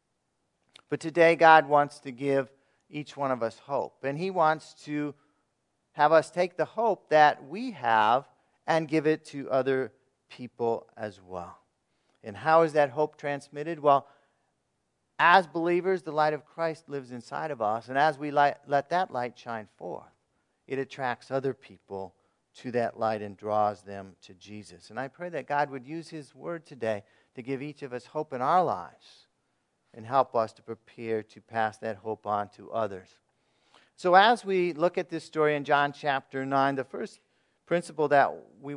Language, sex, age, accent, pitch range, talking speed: English, male, 50-69, American, 125-155 Hz, 180 wpm